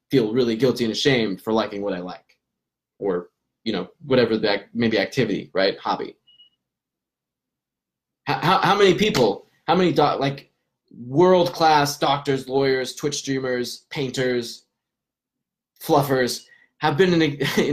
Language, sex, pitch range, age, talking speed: English, male, 115-145 Hz, 20-39, 140 wpm